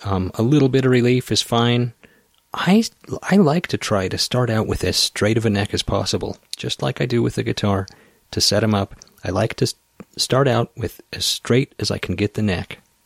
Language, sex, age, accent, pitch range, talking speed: English, male, 30-49, American, 95-120 Hz, 225 wpm